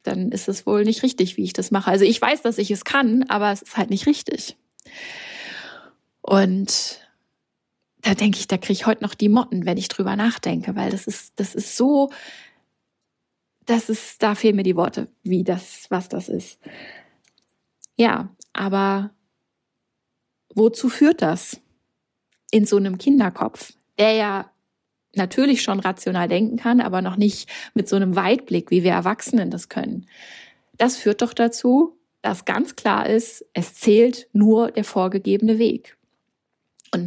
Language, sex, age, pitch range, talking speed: German, female, 20-39, 195-235 Hz, 160 wpm